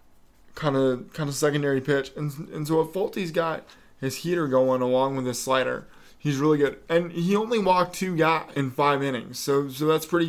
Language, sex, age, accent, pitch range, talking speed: English, male, 20-39, American, 135-165 Hz, 205 wpm